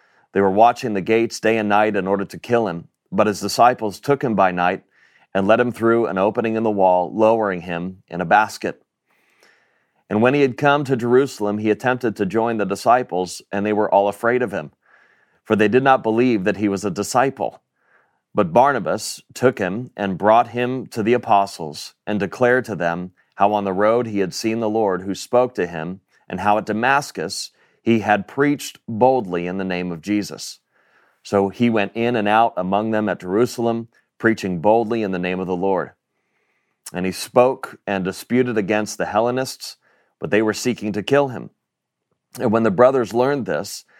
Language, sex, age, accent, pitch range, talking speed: English, male, 30-49, American, 100-115 Hz, 195 wpm